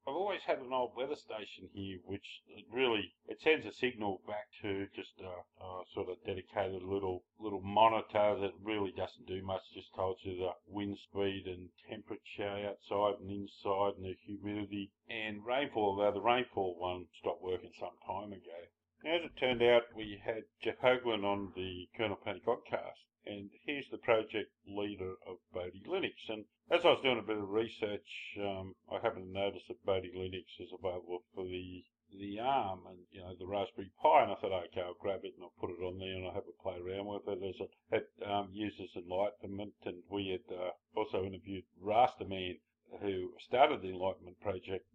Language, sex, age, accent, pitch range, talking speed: English, male, 50-69, Australian, 95-110 Hz, 195 wpm